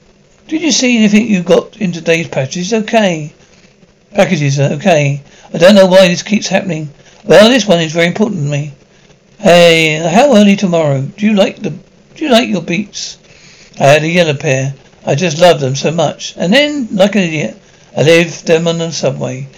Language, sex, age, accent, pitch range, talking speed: English, male, 60-79, British, 165-195 Hz, 195 wpm